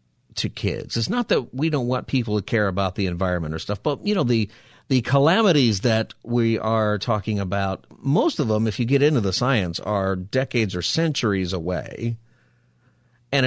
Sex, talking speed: male, 185 wpm